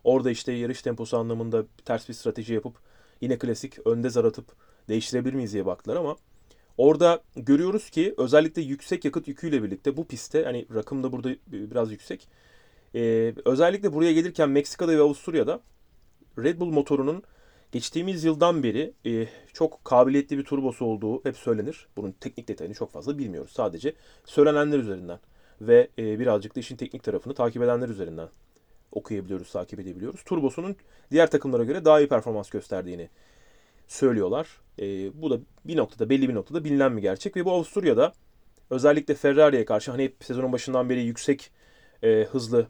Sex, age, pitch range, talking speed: male, 30-49, 115-150 Hz, 150 wpm